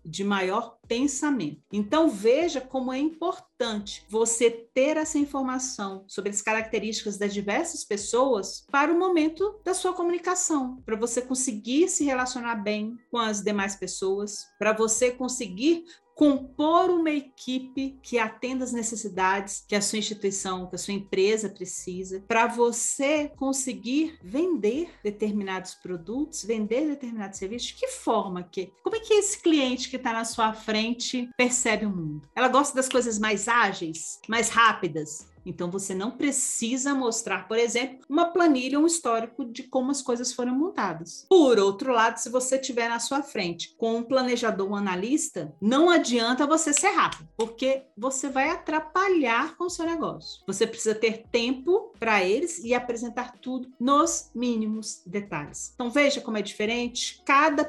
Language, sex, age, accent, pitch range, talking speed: Portuguese, female, 40-59, Brazilian, 210-280 Hz, 155 wpm